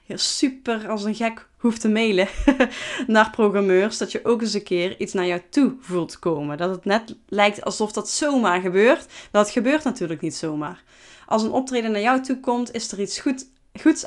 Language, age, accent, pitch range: Dutch, 20-39, Dutch, 200-260 Hz